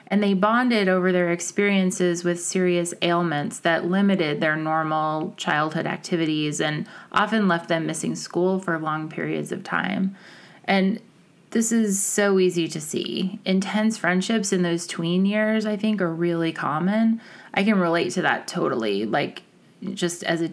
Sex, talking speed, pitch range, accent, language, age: female, 160 wpm, 170-205 Hz, American, English, 30-49